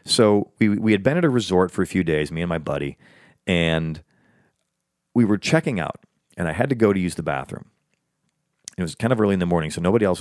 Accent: American